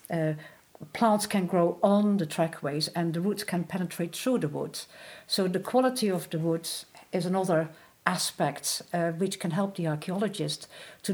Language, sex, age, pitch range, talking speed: English, female, 50-69, 160-195 Hz, 165 wpm